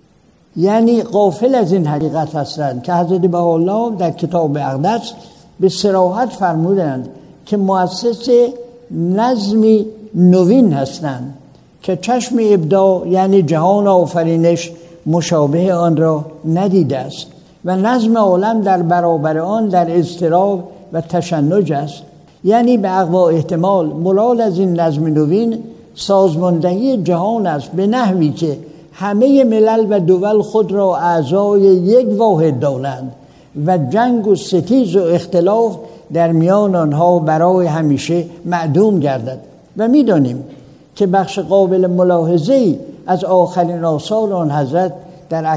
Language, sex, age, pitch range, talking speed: Persian, male, 60-79, 165-205 Hz, 120 wpm